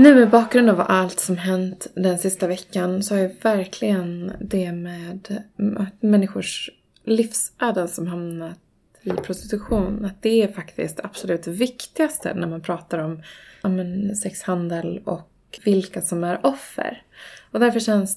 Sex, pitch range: female, 185-225 Hz